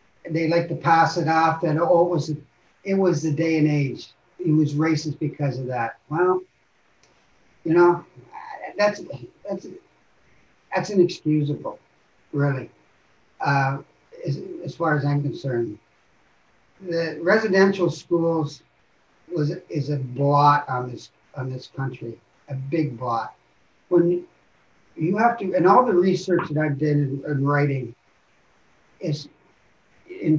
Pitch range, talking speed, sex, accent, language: 145-175 Hz, 130 wpm, male, American, English